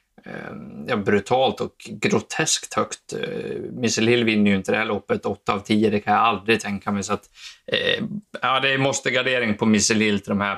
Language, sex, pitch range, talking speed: Swedish, male, 105-120 Hz, 180 wpm